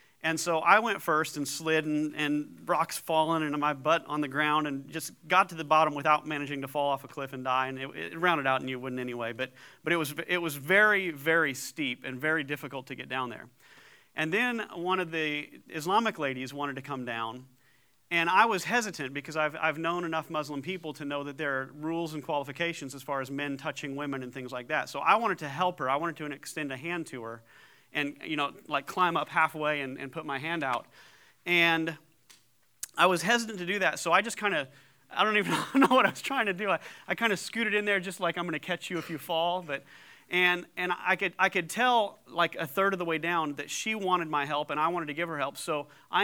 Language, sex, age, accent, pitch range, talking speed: English, male, 40-59, American, 140-175 Hz, 250 wpm